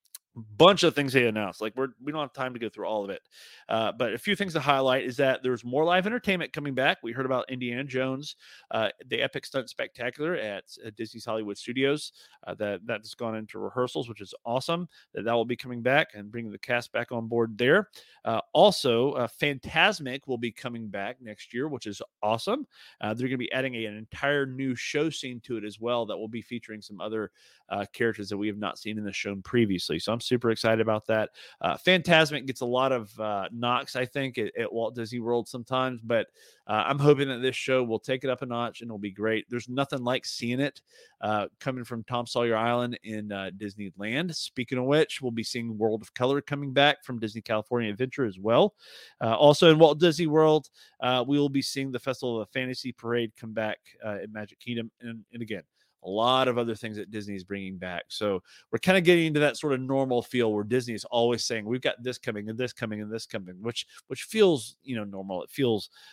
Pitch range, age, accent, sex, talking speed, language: 110-135 Hz, 30-49, American, male, 230 wpm, English